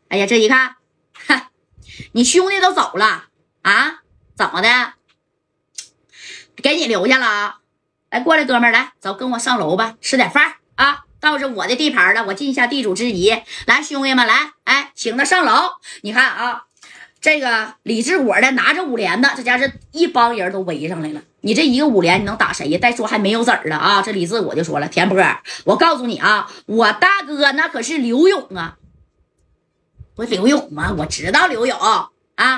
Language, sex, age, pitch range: Chinese, female, 20-39, 210-285 Hz